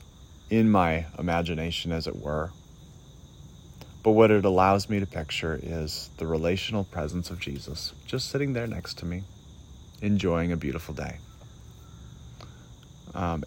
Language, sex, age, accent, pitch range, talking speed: English, male, 30-49, American, 80-100 Hz, 135 wpm